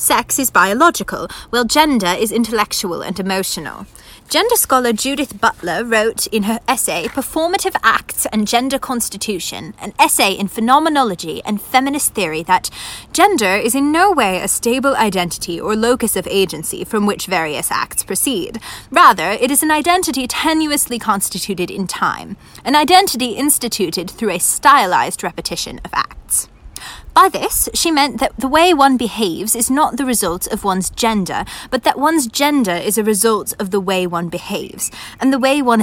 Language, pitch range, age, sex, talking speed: English, 195-280 Hz, 20-39, female, 160 wpm